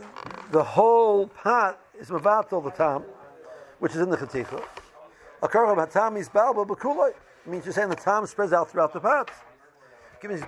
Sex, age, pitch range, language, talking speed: male, 60-79, 165-210 Hz, English, 180 wpm